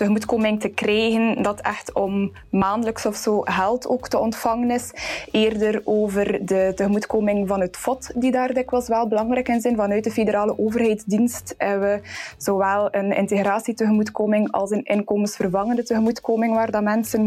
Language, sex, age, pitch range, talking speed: Dutch, female, 20-39, 195-220 Hz, 155 wpm